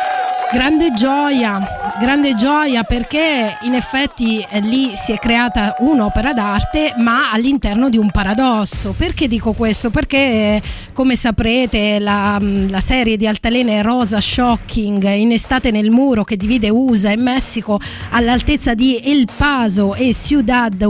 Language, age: Italian, 20-39